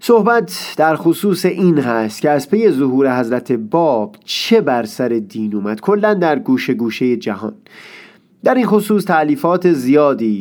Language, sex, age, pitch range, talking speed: Persian, male, 30-49, 135-190 Hz, 140 wpm